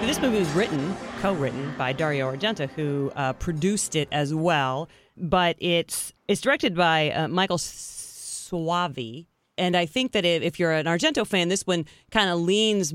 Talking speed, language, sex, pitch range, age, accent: 170 wpm, English, female, 160-220 Hz, 30-49, American